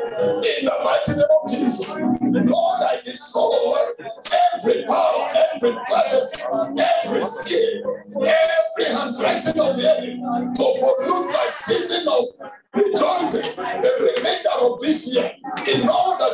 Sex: male